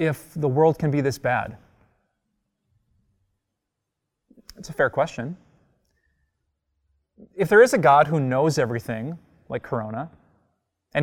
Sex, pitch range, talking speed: male, 115-175 Hz, 120 wpm